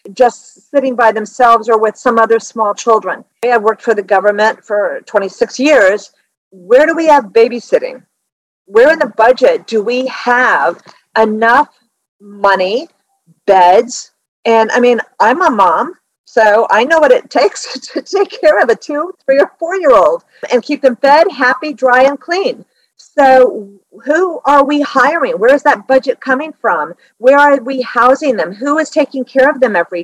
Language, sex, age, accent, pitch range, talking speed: English, female, 50-69, American, 225-285 Hz, 170 wpm